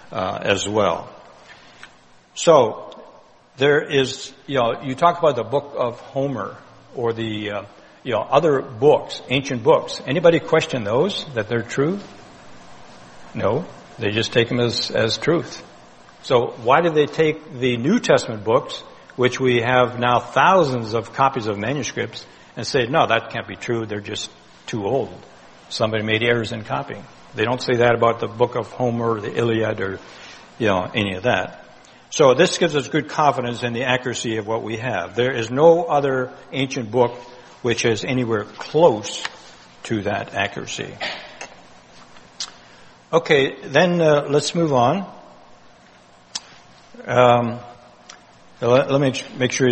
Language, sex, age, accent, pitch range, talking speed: English, male, 60-79, American, 110-135 Hz, 155 wpm